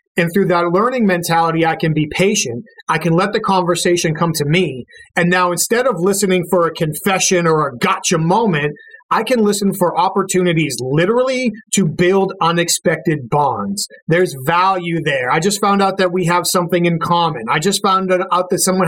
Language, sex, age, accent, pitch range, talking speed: English, male, 30-49, American, 165-195 Hz, 185 wpm